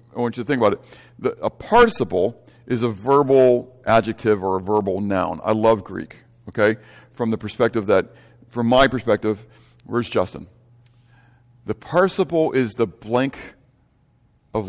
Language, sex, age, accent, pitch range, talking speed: English, male, 50-69, American, 115-135 Hz, 145 wpm